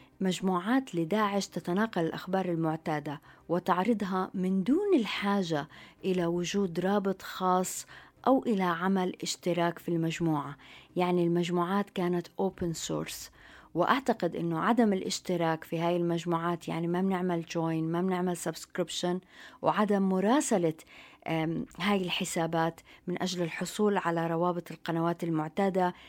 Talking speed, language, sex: 115 wpm, Arabic, female